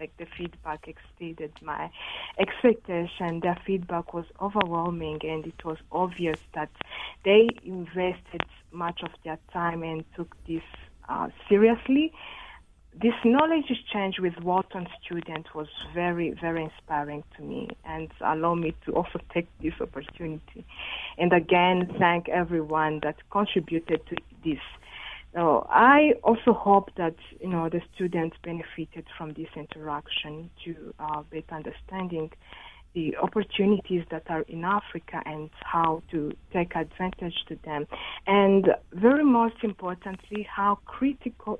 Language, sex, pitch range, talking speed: English, female, 160-195 Hz, 130 wpm